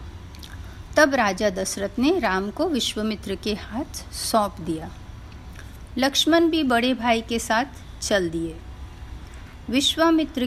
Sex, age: female, 50-69